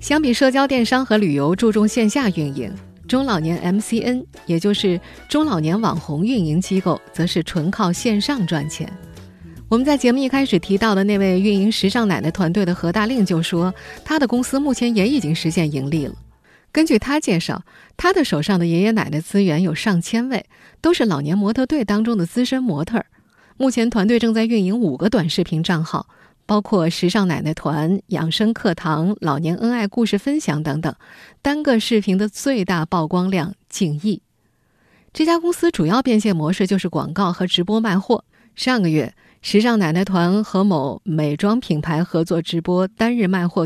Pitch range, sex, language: 170-225 Hz, female, Chinese